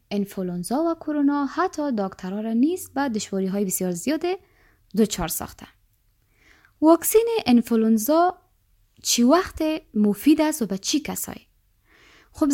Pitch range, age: 205-310 Hz, 20-39